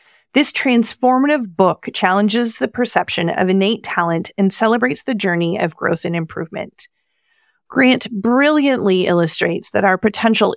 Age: 30-49